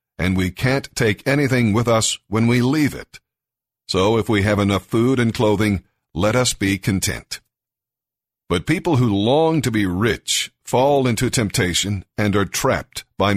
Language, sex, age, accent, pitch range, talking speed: English, male, 50-69, American, 105-125 Hz, 165 wpm